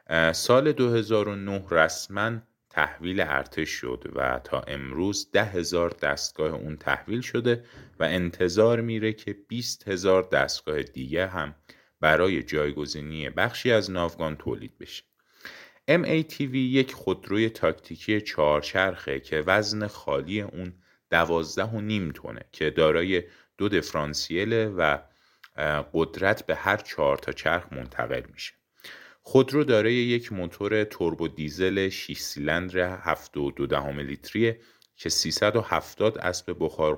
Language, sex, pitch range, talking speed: Persian, male, 75-110 Hz, 110 wpm